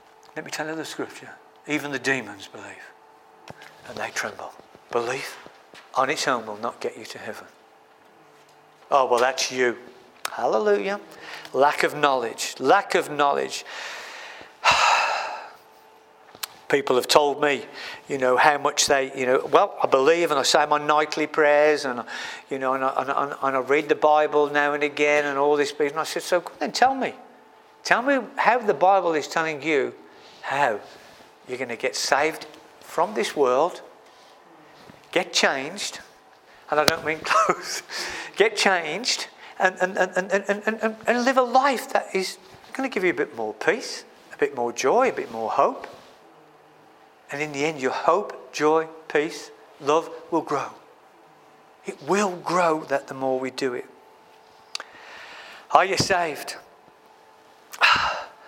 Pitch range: 145-235 Hz